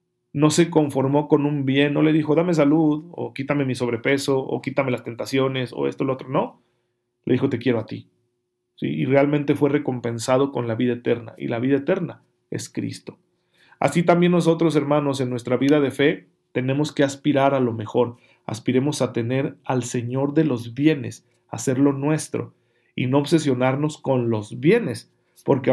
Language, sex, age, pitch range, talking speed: Spanish, male, 40-59, 120-145 Hz, 180 wpm